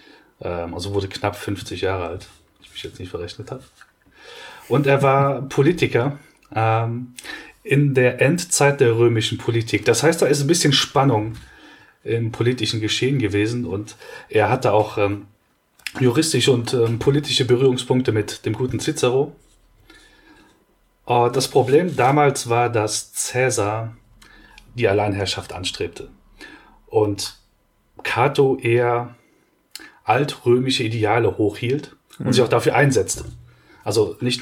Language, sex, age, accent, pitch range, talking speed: German, male, 30-49, German, 105-130 Hz, 125 wpm